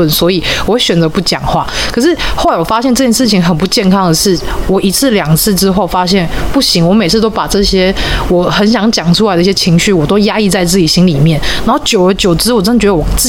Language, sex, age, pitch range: Chinese, female, 30-49, 175-220 Hz